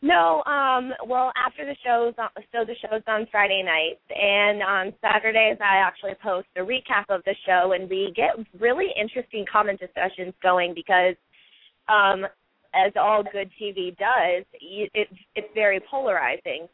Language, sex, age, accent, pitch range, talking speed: English, female, 20-39, American, 180-215 Hz, 155 wpm